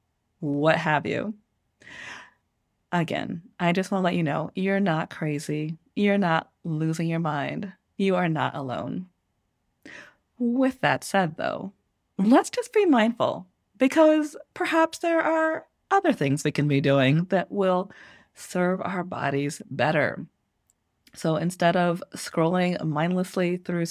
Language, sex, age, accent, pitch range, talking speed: English, female, 30-49, American, 165-225 Hz, 135 wpm